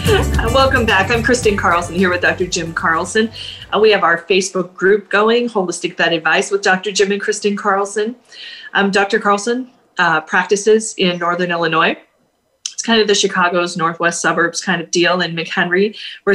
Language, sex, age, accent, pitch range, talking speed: English, female, 30-49, American, 170-210 Hz, 170 wpm